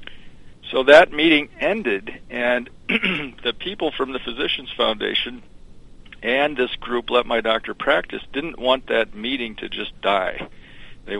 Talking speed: 140 wpm